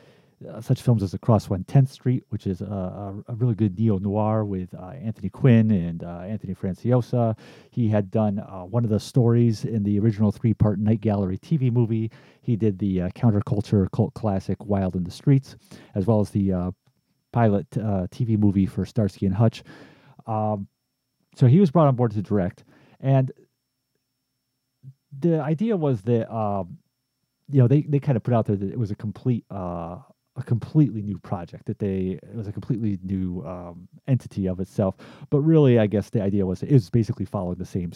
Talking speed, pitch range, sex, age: 190 wpm, 95-125 Hz, male, 40-59